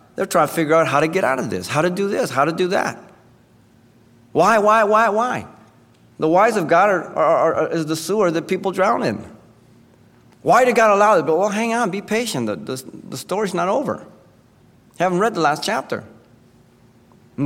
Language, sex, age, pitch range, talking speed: English, male, 40-59, 135-185 Hz, 210 wpm